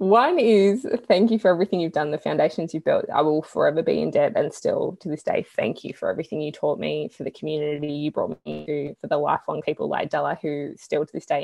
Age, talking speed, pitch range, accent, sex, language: 20-39, 250 wpm, 160-220 Hz, Australian, female, English